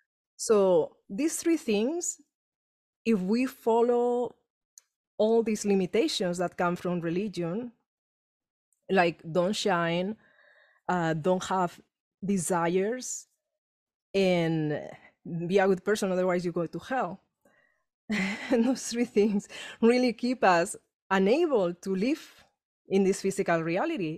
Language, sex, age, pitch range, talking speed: English, female, 30-49, 185-230 Hz, 110 wpm